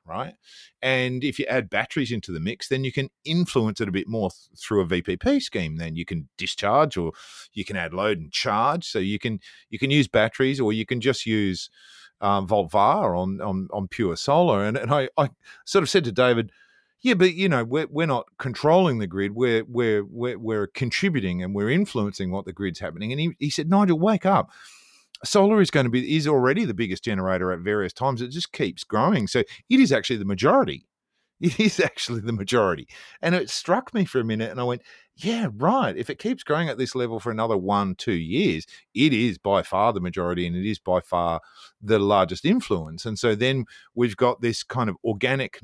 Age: 40-59